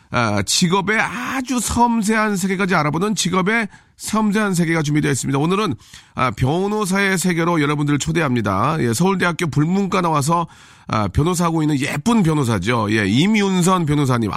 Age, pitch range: 40-59, 130-195 Hz